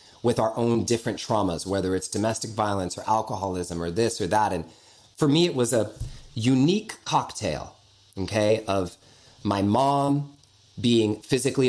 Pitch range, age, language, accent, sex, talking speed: 105-140 Hz, 30-49, English, American, male, 150 wpm